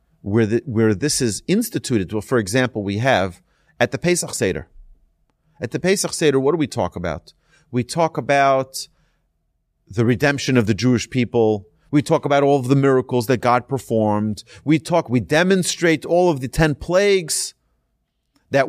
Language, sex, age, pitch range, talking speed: English, male, 40-59, 110-160 Hz, 170 wpm